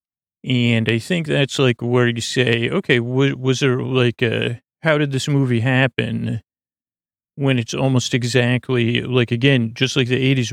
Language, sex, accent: English, male, American